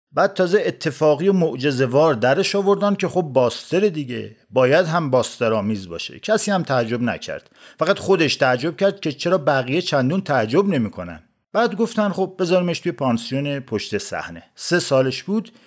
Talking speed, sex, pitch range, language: 155 wpm, male, 130-195 Hz, English